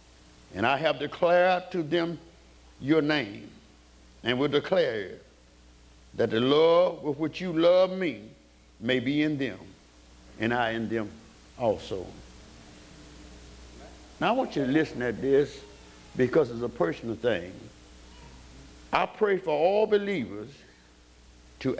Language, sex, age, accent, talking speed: English, male, 60-79, American, 130 wpm